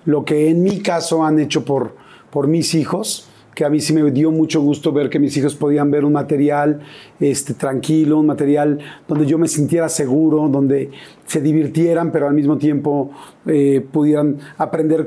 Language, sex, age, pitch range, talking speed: Spanish, male, 40-59, 145-160 Hz, 180 wpm